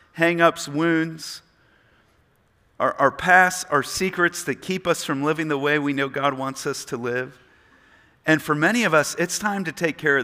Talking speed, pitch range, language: 190 wpm, 140-185 Hz, English